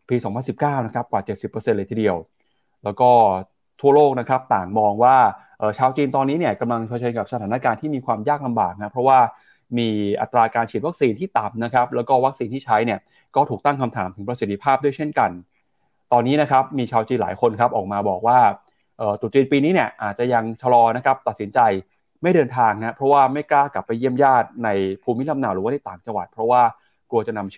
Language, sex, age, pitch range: Thai, male, 20-39, 110-140 Hz